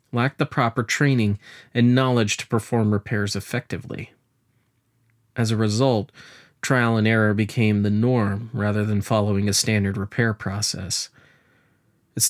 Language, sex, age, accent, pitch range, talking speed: English, male, 30-49, American, 105-130 Hz, 130 wpm